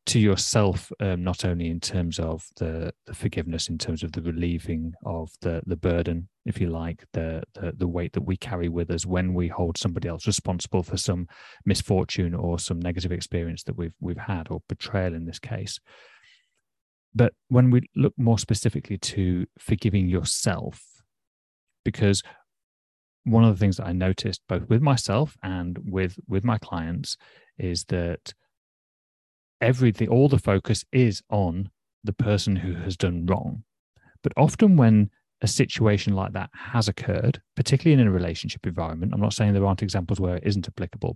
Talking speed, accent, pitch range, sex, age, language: 170 wpm, British, 90-110 Hz, male, 30-49, English